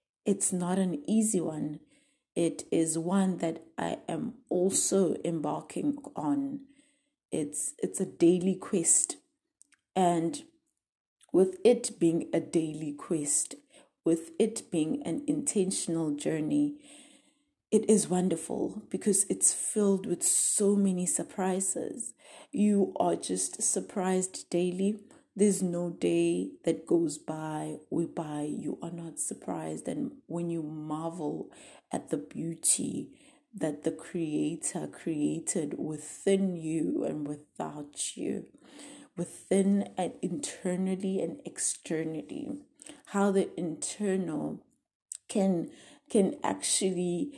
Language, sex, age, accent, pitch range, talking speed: English, female, 30-49, South African, 165-275 Hz, 110 wpm